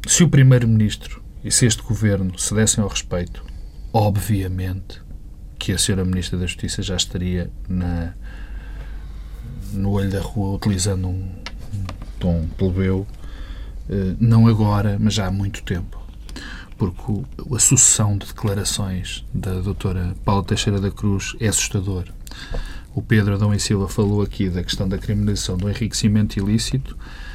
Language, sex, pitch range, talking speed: Portuguese, male, 95-125 Hz, 140 wpm